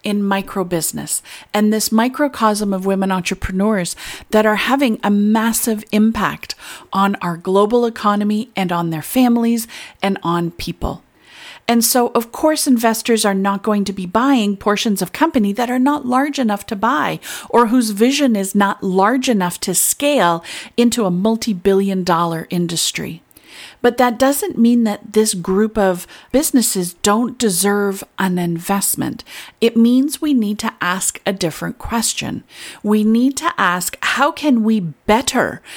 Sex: female